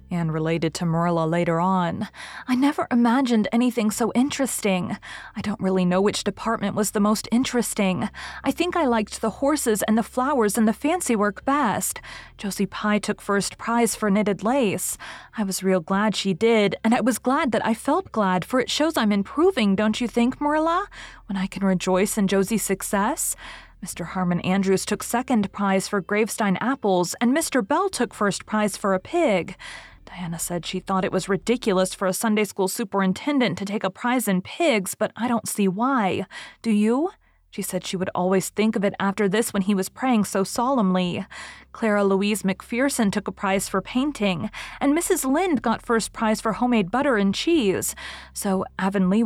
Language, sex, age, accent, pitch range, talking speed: English, female, 30-49, American, 195-245 Hz, 190 wpm